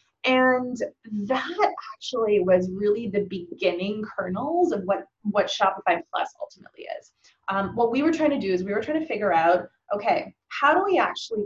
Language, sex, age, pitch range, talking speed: English, female, 20-39, 195-260 Hz, 180 wpm